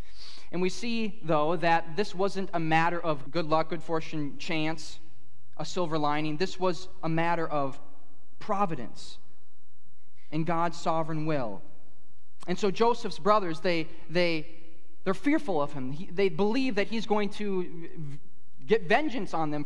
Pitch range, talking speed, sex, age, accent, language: 110-170 Hz, 150 wpm, male, 20-39, American, English